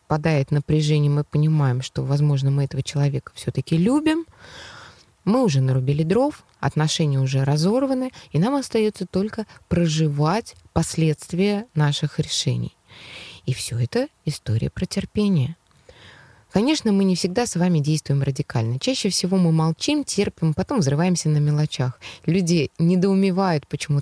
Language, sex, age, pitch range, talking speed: Russian, female, 20-39, 140-180 Hz, 130 wpm